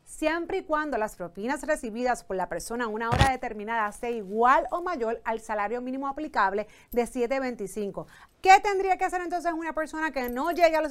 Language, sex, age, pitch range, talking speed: Spanish, female, 30-49, 225-305 Hz, 195 wpm